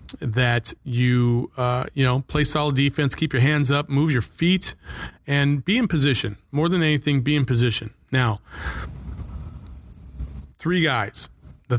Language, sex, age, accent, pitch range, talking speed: English, male, 30-49, American, 120-140 Hz, 150 wpm